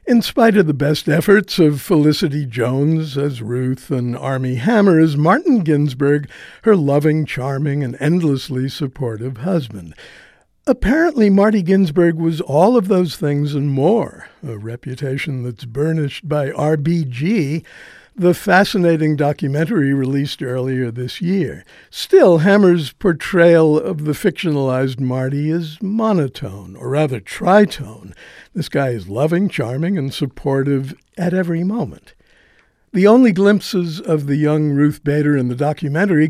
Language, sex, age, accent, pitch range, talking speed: English, male, 60-79, American, 135-180 Hz, 130 wpm